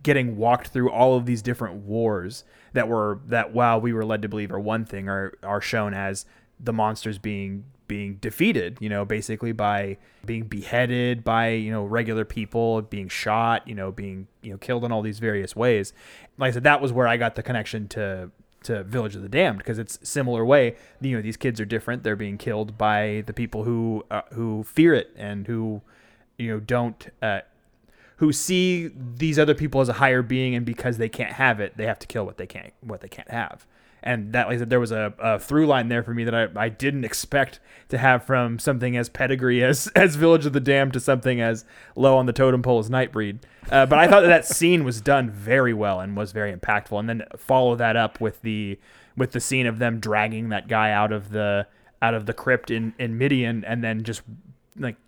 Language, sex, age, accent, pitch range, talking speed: English, male, 20-39, American, 105-125 Hz, 225 wpm